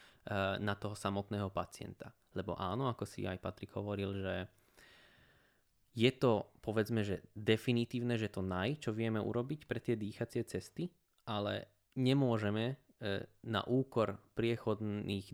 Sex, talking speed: male, 125 wpm